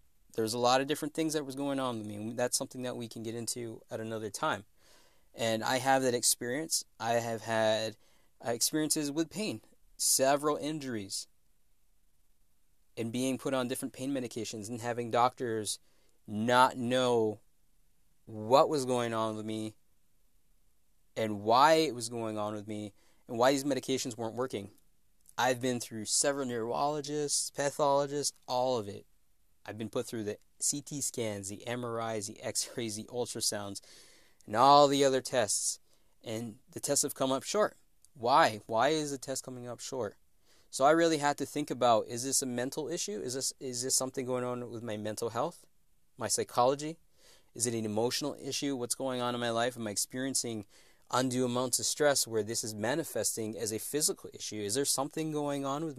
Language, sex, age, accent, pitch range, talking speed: English, male, 20-39, American, 110-135 Hz, 180 wpm